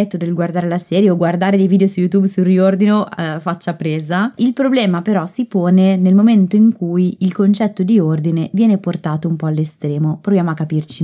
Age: 20-39